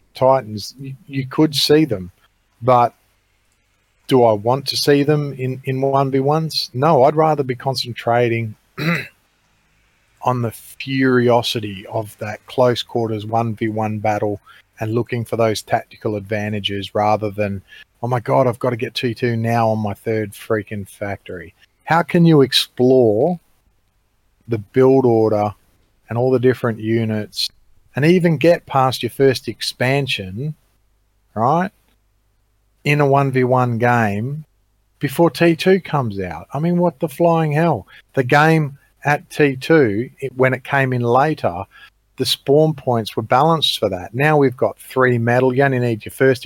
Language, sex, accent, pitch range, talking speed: English, male, Australian, 105-140 Hz, 145 wpm